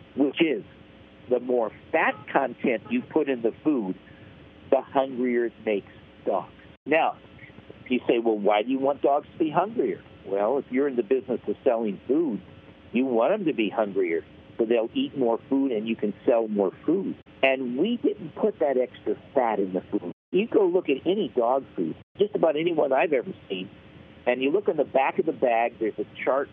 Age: 50-69